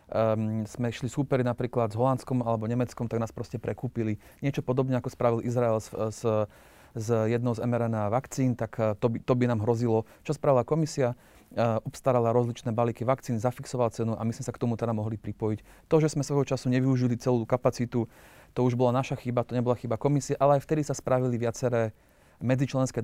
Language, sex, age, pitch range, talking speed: Slovak, male, 30-49, 115-130 Hz, 195 wpm